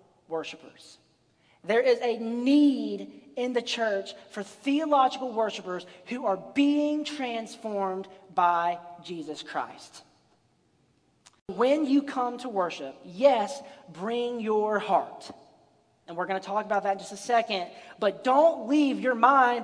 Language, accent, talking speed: English, American, 130 wpm